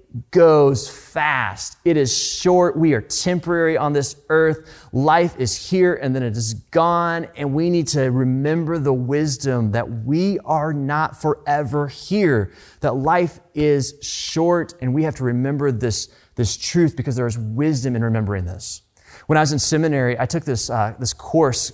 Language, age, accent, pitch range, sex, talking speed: English, 30-49, American, 120-155 Hz, male, 170 wpm